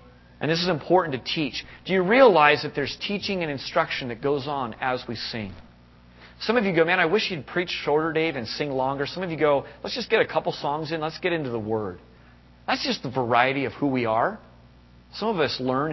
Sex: male